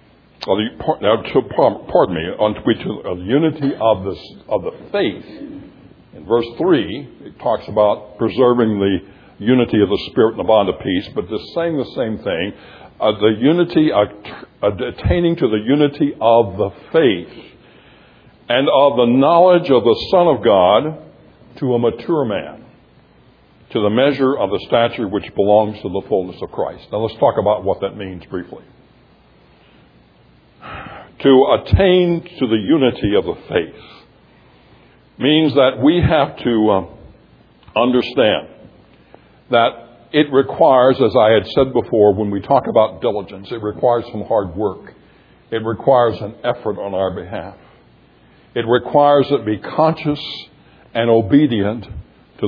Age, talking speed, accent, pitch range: 60-79, 140 wpm, American, 105-140 Hz